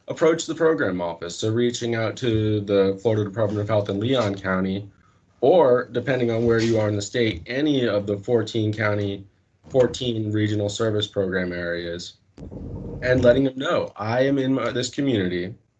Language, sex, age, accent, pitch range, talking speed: English, male, 20-39, American, 95-110 Hz, 165 wpm